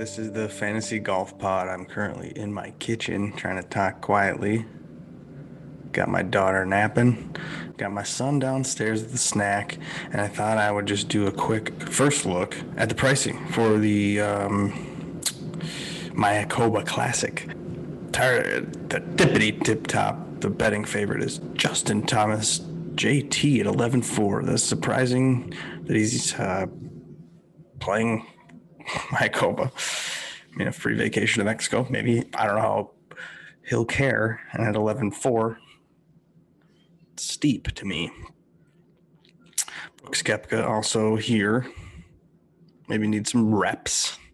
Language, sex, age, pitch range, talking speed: English, male, 20-39, 105-120 Hz, 125 wpm